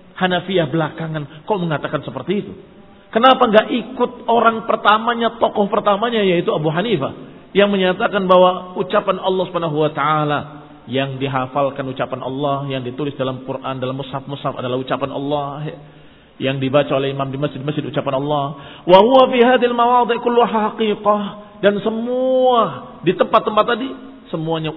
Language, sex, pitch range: Indonesian, male, 135-195 Hz